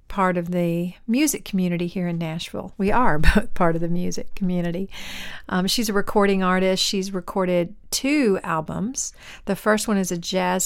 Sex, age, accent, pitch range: female, 50-69, American, 180-210 Hz